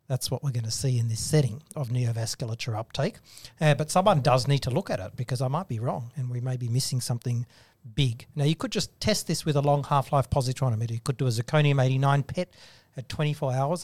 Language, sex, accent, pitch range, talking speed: English, male, Australian, 125-150 Hz, 230 wpm